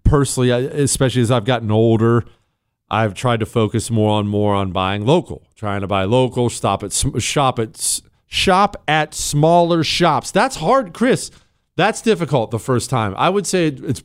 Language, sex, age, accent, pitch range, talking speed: English, male, 40-59, American, 100-140 Hz, 170 wpm